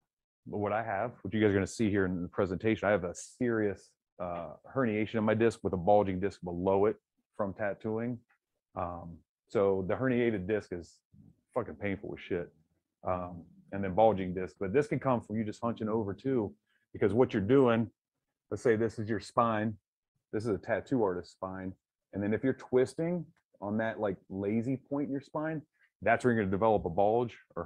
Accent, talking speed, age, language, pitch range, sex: American, 205 wpm, 30-49, English, 95-120 Hz, male